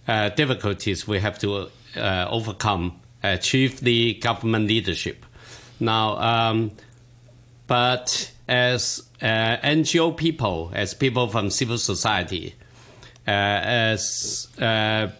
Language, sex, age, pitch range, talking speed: English, male, 50-69, 105-125 Hz, 110 wpm